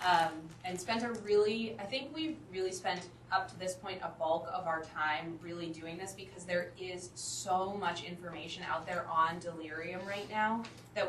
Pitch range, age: 160-185 Hz, 20-39